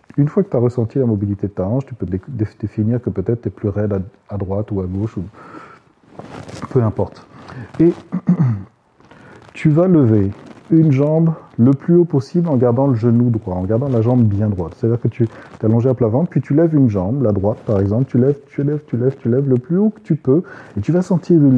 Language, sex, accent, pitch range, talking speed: French, male, French, 115-160 Hz, 235 wpm